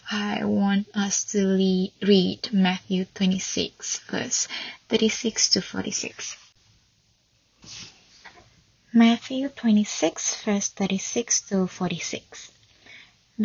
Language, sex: Indonesian, female